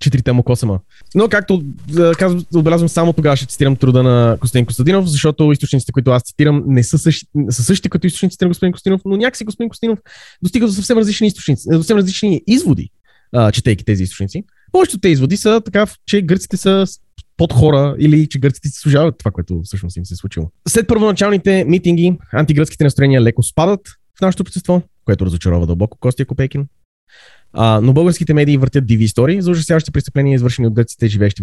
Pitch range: 115-180 Hz